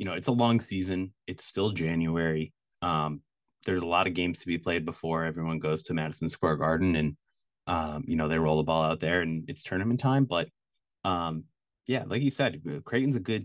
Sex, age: male, 30-49